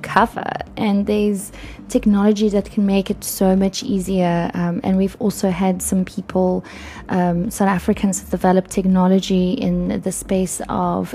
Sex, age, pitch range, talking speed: female, 20-39, 185-215 Hz, 145 wpm